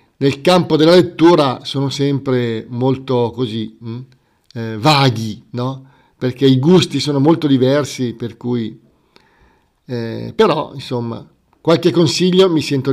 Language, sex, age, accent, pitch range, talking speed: Italian, male, 50-69, native, 135-180 Hz, 120 wpm